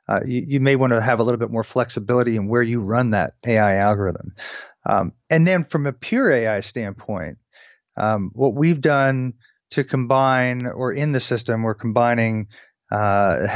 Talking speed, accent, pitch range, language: 175 wpm, American, 110-135 Hz, English